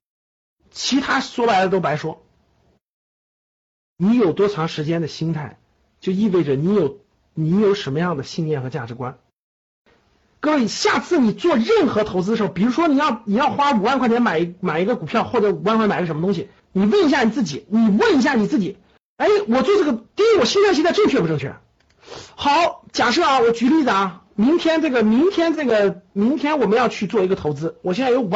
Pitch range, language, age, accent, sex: 170-250 Hz, Chinese, 50-69, native, male